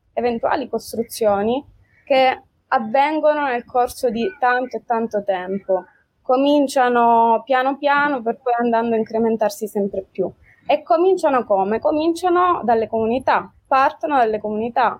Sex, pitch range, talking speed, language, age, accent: female, 210-260 Hz, 120 wpm, Italian, 20-39, native